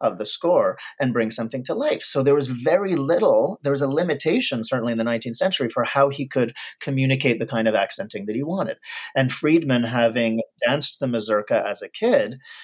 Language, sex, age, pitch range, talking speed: English, male, 30-49, 115-140 Hz, 205 wpm